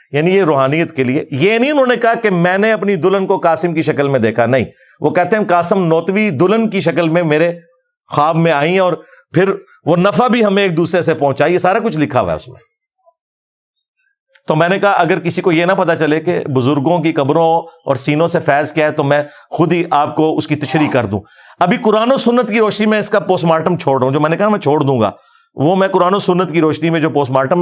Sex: male